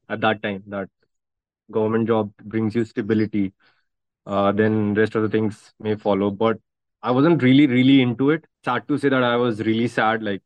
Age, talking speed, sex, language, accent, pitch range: 20-39, 195 wpm, male, Hindi, native, 105-130 Hz